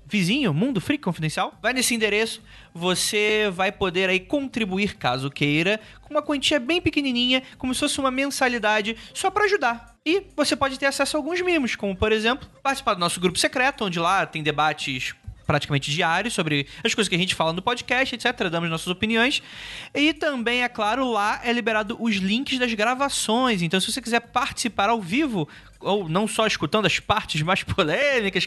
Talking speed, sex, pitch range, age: 185 wpm, male, 170-245 Hz, 20-39